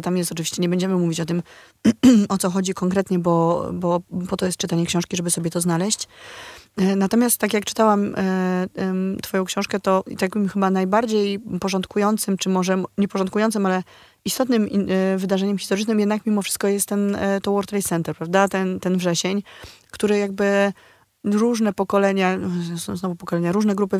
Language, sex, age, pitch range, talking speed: Polish, female, 30-49, 175-195 Hz, 170 wpm